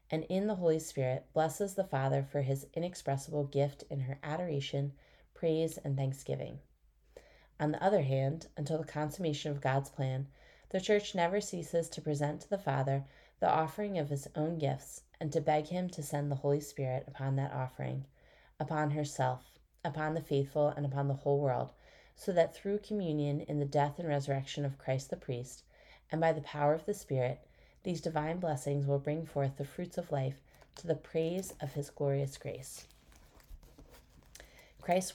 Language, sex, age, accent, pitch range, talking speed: English, female, 30-49, American, 135-160 Hz, 175 wpm